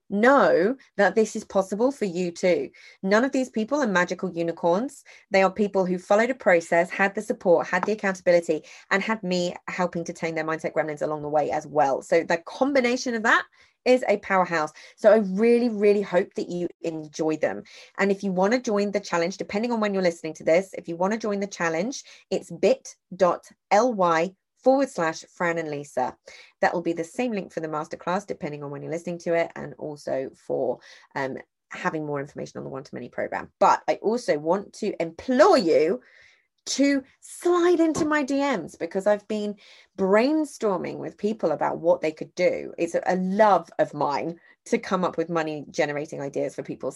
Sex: female